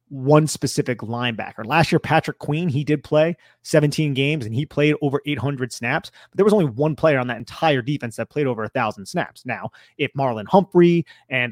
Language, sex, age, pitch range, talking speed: English, male, 30-49, 125-155 Hz, 205 wpm